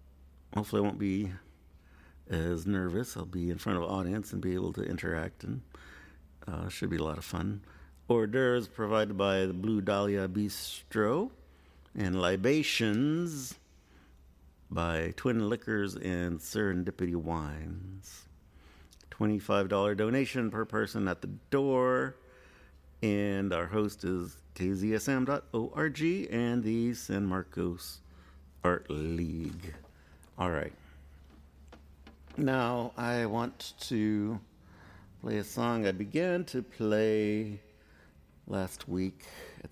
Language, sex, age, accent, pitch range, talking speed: English, male, 50-69, American, 75-110 Hz, 115 wpm